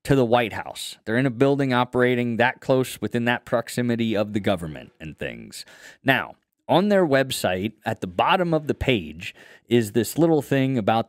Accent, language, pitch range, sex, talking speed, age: American, English, 110-150 Hz, male, 185 wpm, 20-39